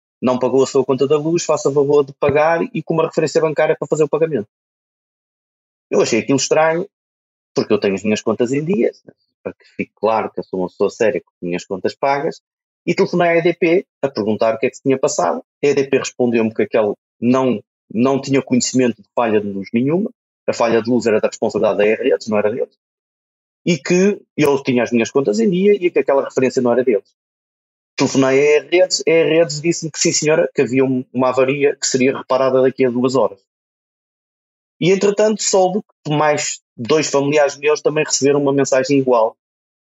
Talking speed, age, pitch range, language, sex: 200 wpm, 30-49, 130-175 Hz, Portuguese, male